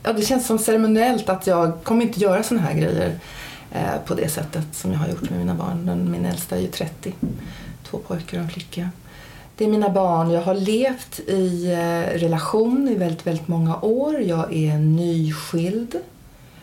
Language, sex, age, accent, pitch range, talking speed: Swedish, female, 40-59, native, 150-175 Hz, 175 wpm